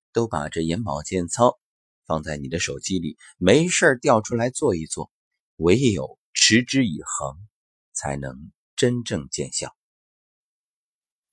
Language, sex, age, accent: Chinese, male, 30-49, native